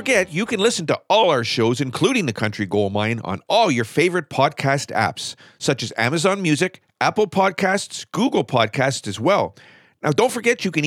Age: 50-69